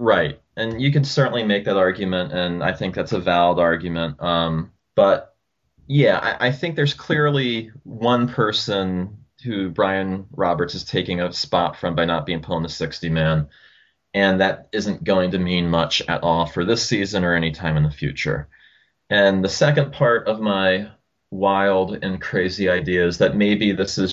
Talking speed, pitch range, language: 180 wpm, 85-100 Hz, English